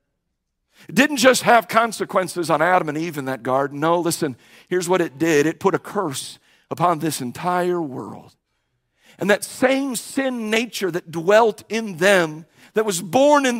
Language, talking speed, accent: English, 170 wpm, American